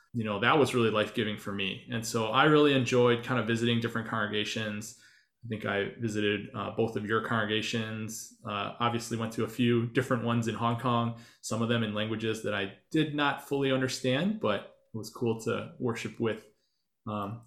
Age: 20-39